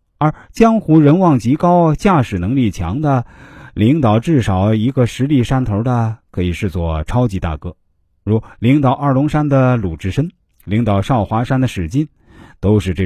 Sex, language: male, Chinese